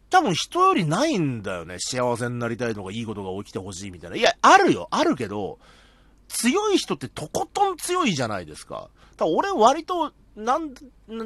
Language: Japanese